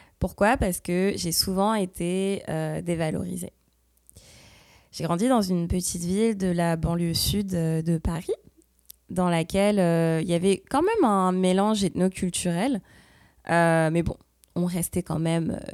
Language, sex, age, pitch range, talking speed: French, female, 20-39, 165-195 Hz, 145 wpm